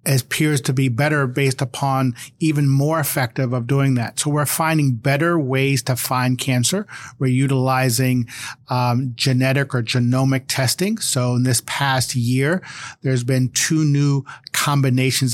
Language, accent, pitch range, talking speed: English, American, 125-140 Hz, 145 wpm